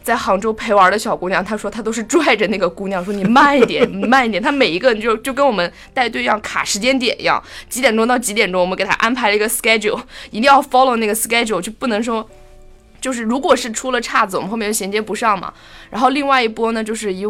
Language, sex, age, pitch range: Chinese, female, 20-39, 200-265 Hz